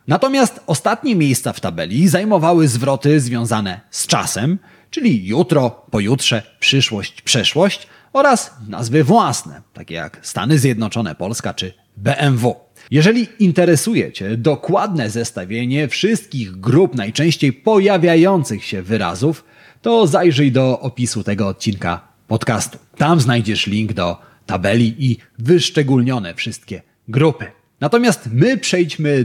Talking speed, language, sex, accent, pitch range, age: 115 wpm, Polish, male, native, 115-160 Hz, 30-49